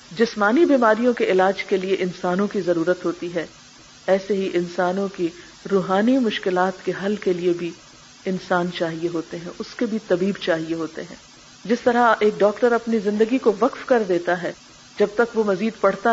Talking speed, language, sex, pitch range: 180 wpm, Urdu, female, 195-265 Hz